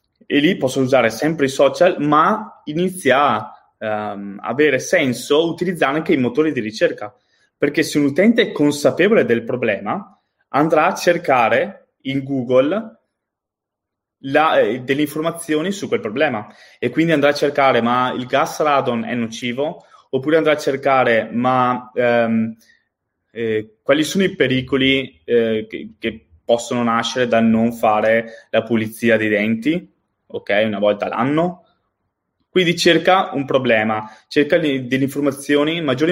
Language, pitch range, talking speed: Italian, 115-155 Hz, 140 wpm